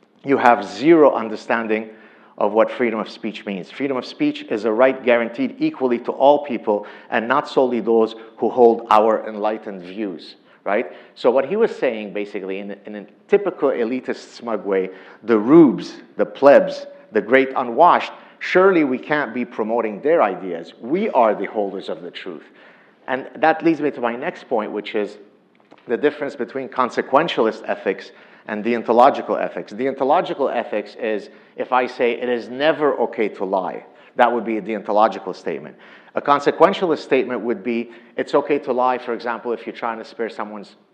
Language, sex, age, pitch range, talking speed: English, male, 50-69, 110-135 Hz, 175 wpm